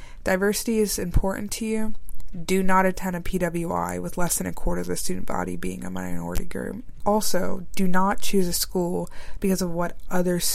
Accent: American